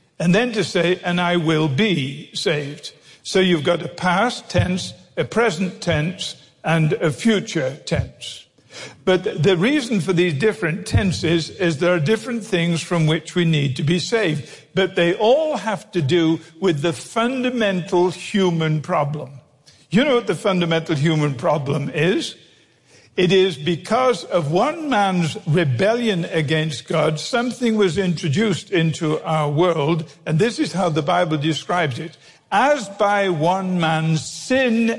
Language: English